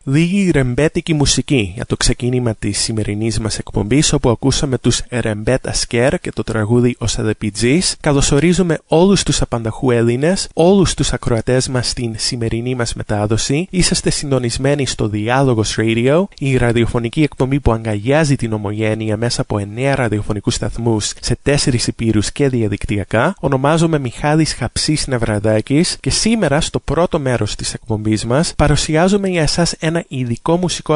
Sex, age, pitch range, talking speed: male, 20-39, 115-155 Hz, 80 wpm